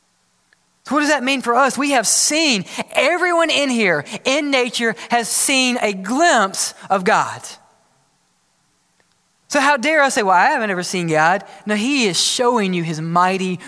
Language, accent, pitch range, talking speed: English, American, 195-270 Hz, 170 wpm